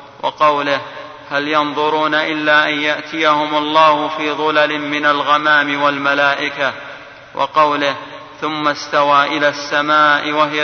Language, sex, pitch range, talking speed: Arabic, male, 145-150 Hz, 100 wpm